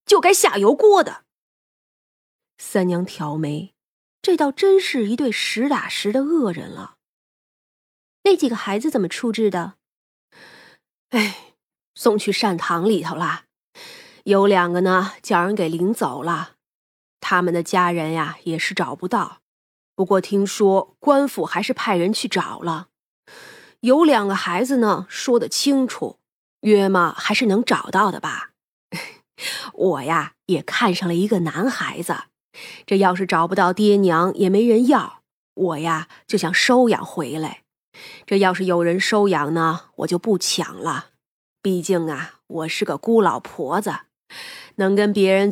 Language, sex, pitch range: Chinese, female, 175-245 Hz